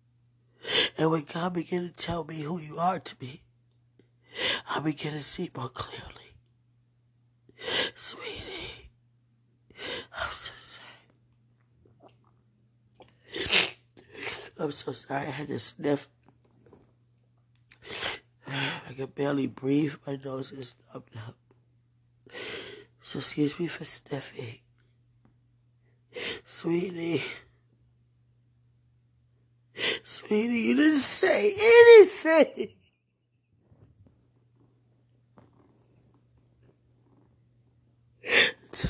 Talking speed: 75 wpm